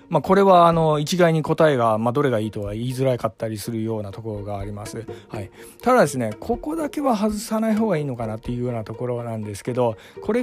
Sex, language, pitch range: male, Japanese, 115-170 Hz